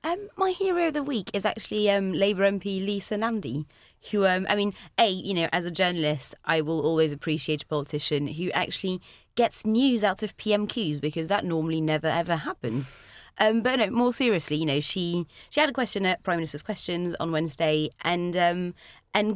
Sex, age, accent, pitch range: female, 20-39, British, 155-200 Hz